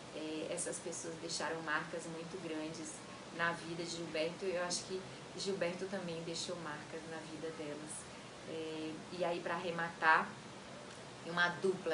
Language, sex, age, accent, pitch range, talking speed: Portuguese, female, 20-39, Brazilian, 155-170 Hz, 135 wpm